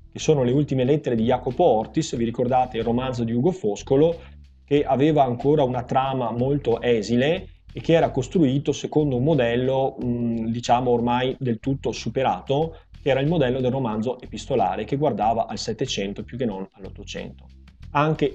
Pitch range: 120-145 Hz